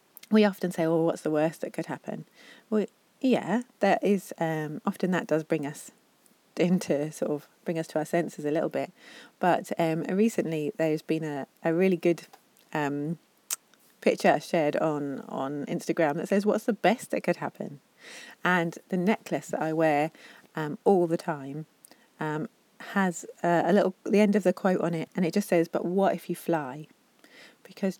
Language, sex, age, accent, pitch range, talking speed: English, female, 30-49, British, 155-200 Hz, 185 wpm